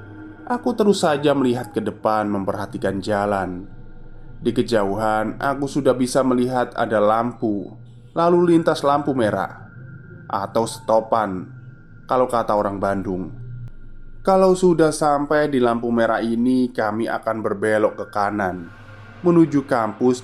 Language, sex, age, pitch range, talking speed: Indonesian, male, 20-39, 110-130 Hz, 120 wpm